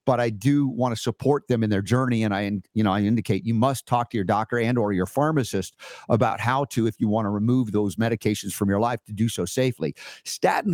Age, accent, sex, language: 50-69, American, male, English